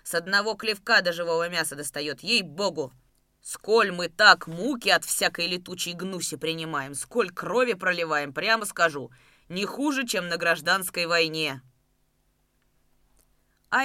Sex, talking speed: female, 125 wpm